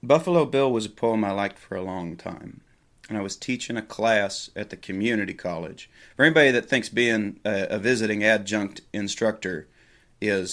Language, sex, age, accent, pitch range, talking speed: English, male, 30-49, American, 105-130 Hz, 180 wpm